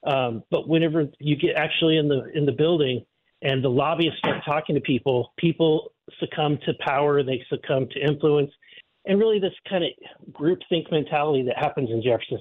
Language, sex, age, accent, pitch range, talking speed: English, male, 40-59, American, 140-175 Hz, 185 wpm